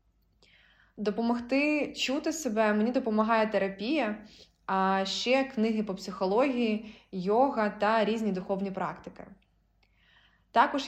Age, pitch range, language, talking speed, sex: 20-39, 185-225 Hz, Ukrainian, 95 wpm, female